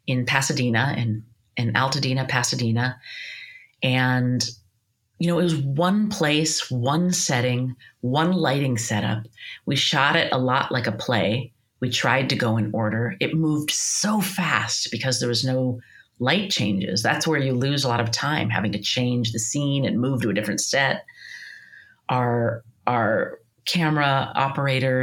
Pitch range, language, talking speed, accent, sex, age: 115-135 Hz, English, 155 wpm, American, female, 30-49